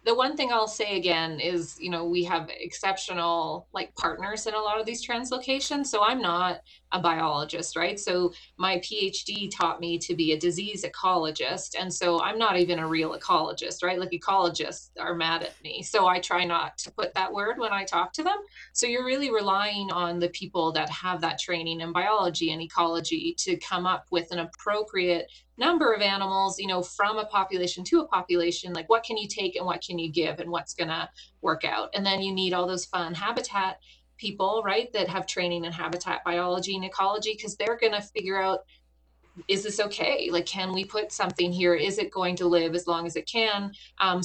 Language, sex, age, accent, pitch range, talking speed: English, female, 30-49, American, 175-210 Hz, 210 wpm